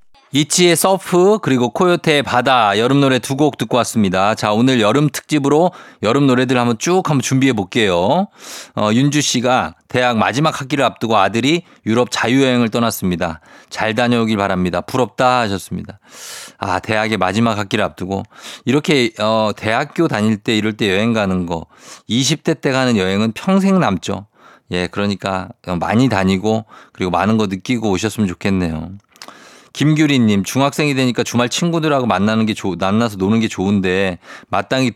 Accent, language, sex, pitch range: native, Korean, male, 100-135 Hz